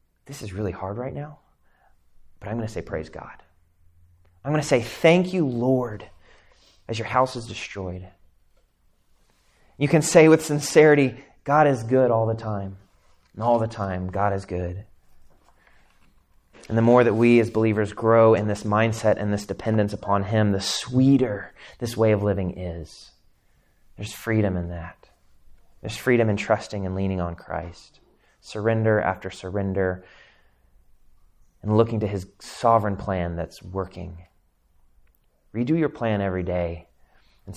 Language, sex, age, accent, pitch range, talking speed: English, male, 30-49, American, 90-115 Hz, 150 wpm